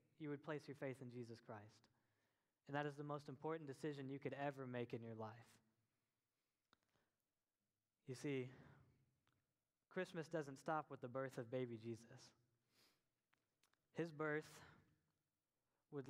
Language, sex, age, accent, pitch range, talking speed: English, male, 10-29, American, 125-145 Hz, 135 wpm